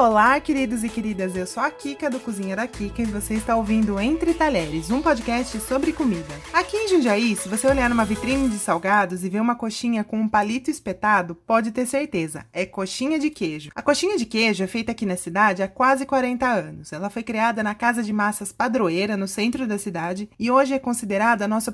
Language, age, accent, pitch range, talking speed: Portuguese, 20-39, Brazilian, 210-290 Hz, 215 wpm